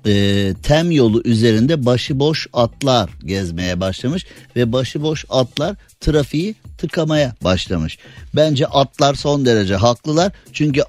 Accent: native